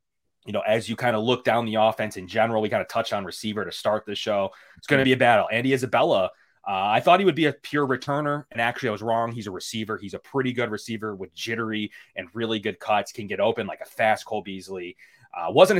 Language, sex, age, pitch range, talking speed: English, male, 30-49, 95-120 Hz, 260 wpm